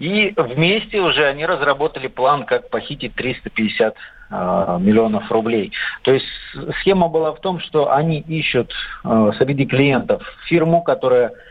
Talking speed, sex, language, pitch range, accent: 135 wpm, male, Russian, 125-160 Hz, native